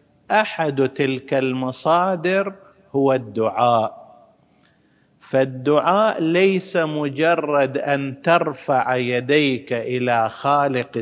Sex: male